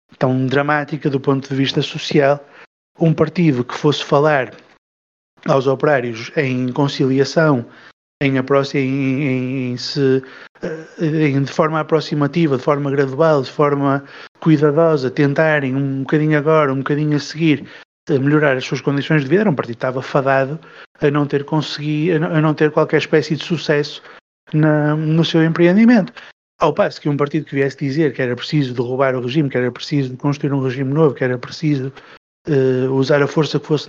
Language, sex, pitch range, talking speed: Portuguese, male, 135-155 Hz, 180 wpm